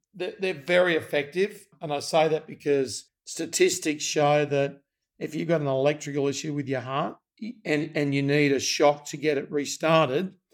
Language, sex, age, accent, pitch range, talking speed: English, male, 50-69, Australian, 135-155 Hz, 170 wpm